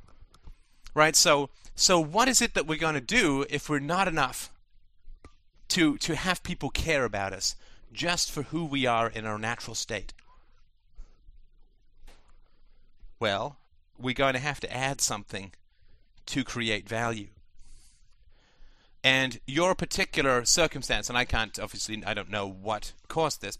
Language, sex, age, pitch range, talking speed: English, male, 30-49, 105-145 Hz, 140 wpm